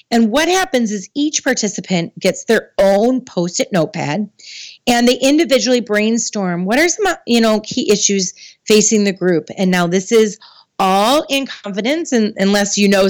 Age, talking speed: 30-49, 160 wpm